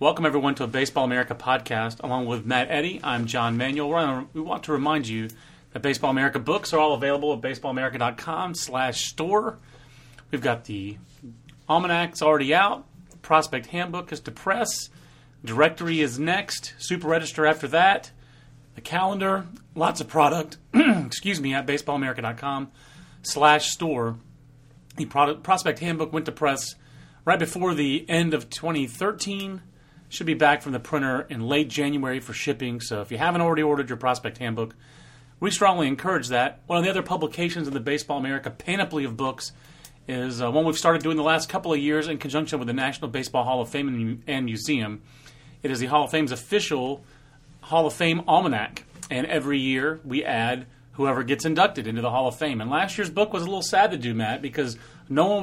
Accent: American